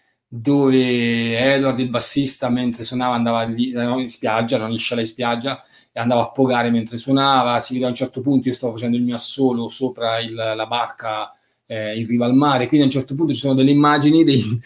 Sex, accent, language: male, native, Italian